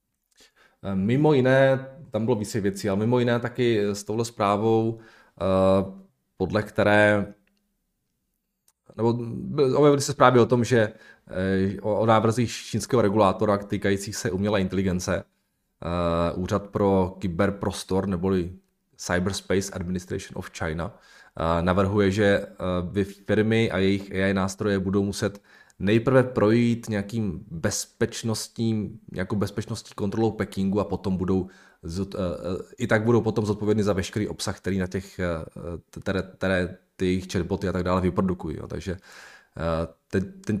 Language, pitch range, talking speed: Czech, 95-115 Hz, 115 wpm